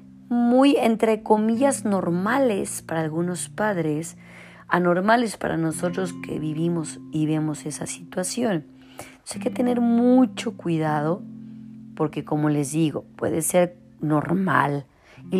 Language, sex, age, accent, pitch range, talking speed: Spanish, female, 40-59, Mexican, 155-195 Hz, 115 wpm